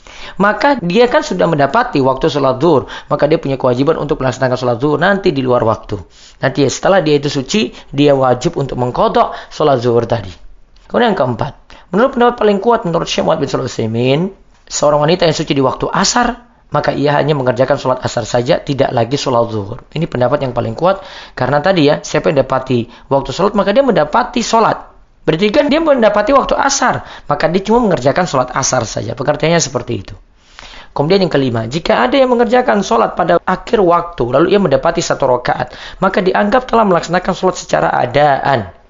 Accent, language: native, Indonesian